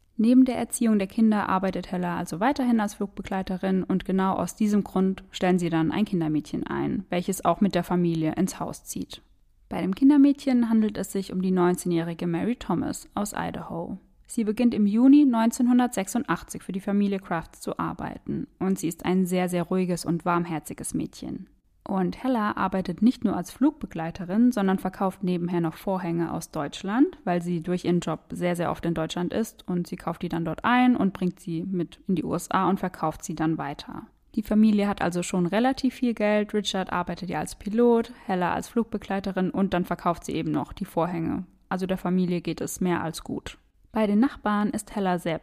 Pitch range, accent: 175-215 Hz, German